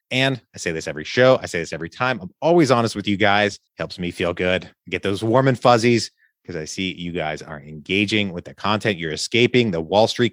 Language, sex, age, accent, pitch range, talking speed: English, male, 30-49, American, 85-115 Hz, 240 wpm